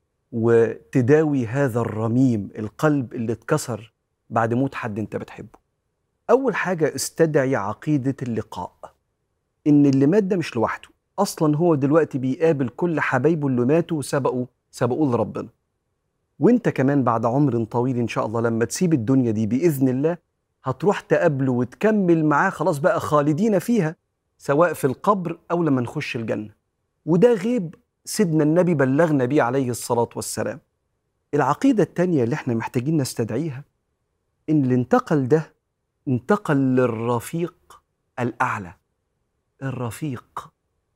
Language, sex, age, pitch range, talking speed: Arabic, male, 40-59, 120-165 Hz, 125 wpm